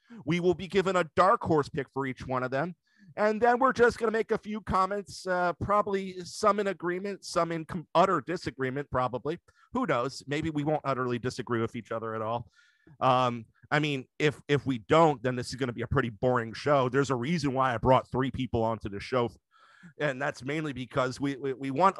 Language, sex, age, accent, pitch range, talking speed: English, male, 40-59, American, 125-175 Hz, 225 wpm